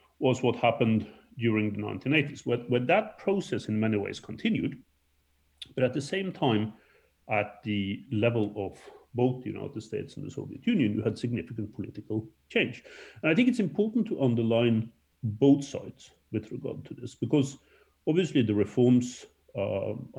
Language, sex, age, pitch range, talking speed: English, male, 40-59, 105-135 Hz, 160 wpm